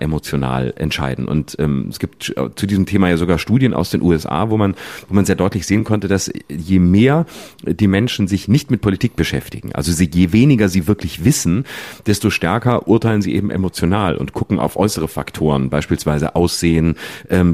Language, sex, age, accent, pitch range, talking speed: German, male, 40-59, German, 85-110 Hz, 180 wpm